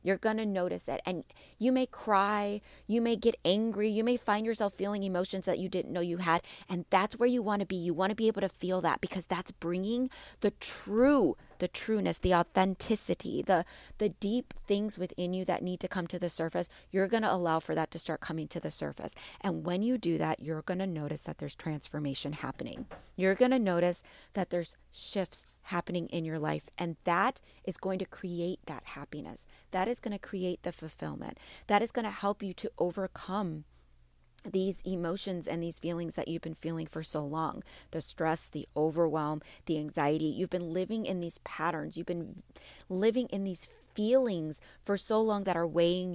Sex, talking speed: female, 205 wpm